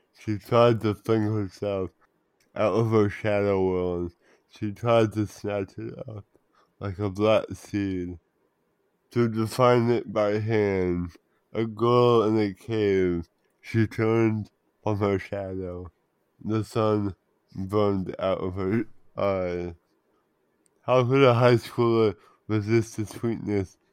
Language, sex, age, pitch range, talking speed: English, male, 20-39, 95-115 Hz, 125 wpm